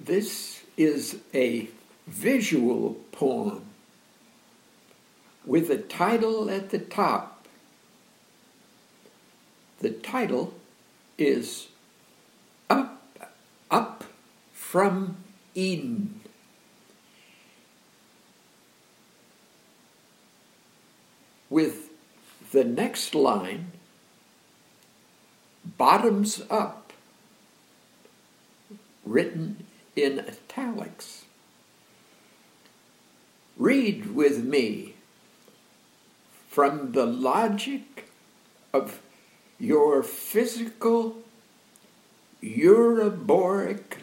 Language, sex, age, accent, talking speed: English, male, 60-79, American, 50 wpm